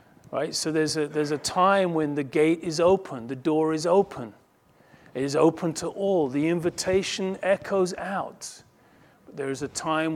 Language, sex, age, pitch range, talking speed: English, male, 40-59, 145-170 Hz, 175 wpm